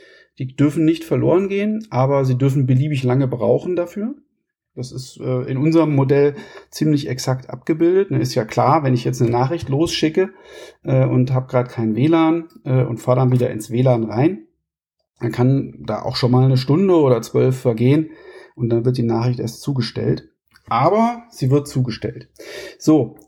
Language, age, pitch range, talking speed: German, 40-59, 125-165 Hz, 165 wpm